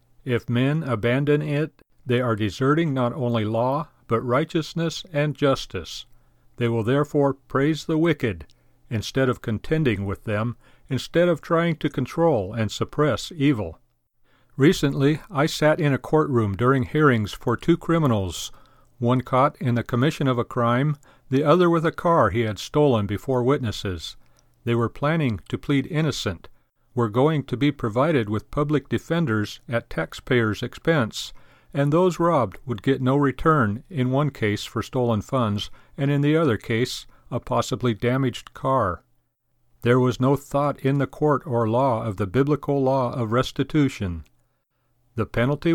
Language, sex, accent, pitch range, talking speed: English, male, American, 115-145 Hz, 155 wpm